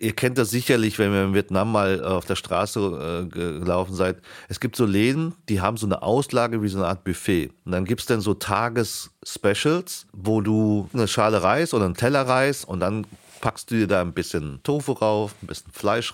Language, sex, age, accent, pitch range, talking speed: German, male, 40-59, German, 90-115 Hz, 215 wpm